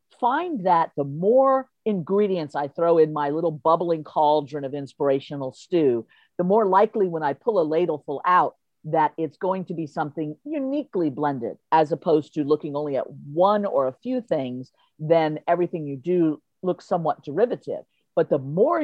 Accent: American